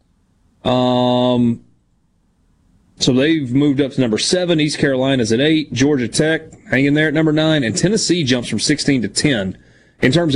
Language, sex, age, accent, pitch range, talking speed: English, male, 30-49, American, 120-155 Hz, 160 wpm